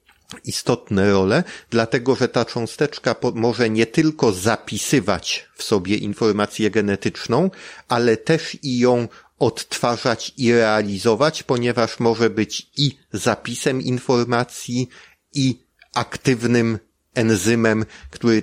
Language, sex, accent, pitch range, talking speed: Polish, male, native, 100-120 Hz, 100 wpm